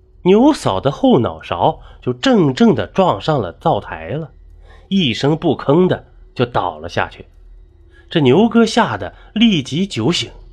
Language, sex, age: Chinese, male, 30-49